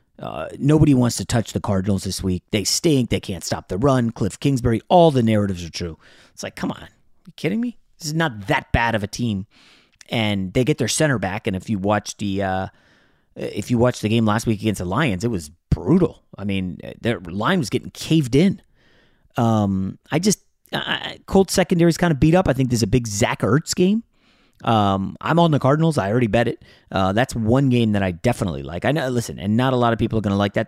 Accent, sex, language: American, male, English